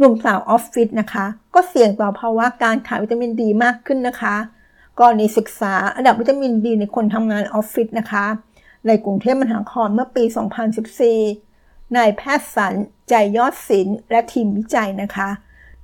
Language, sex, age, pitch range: Thai, female, 60-79, 215-245 Hz